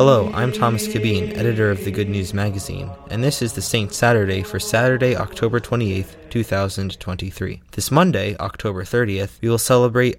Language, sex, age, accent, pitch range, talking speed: English, male, 20-39, American, 95-115 Hz, 165 wpm